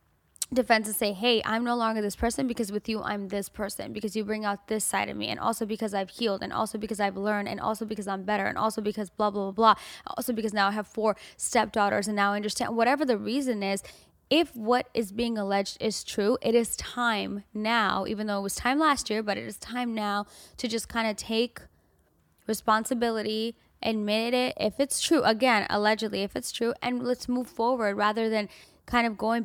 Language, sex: English, female